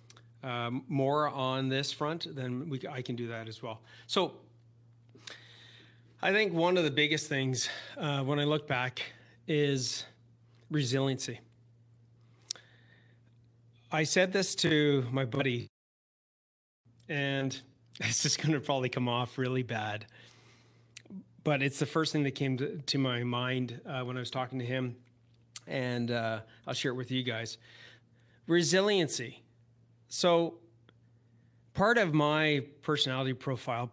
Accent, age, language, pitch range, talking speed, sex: American, 30-49, English, 120-140 Hz, 135 wpm, male